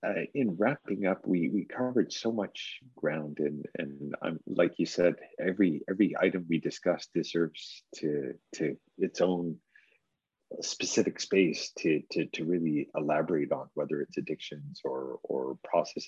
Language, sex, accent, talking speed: English, male, American, 150 wpm